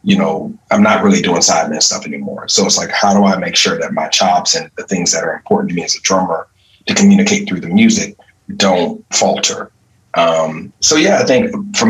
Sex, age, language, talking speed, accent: male, 30-49, English, 220 wpm, American